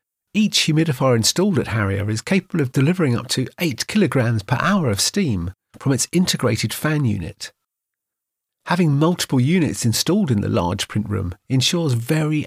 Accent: British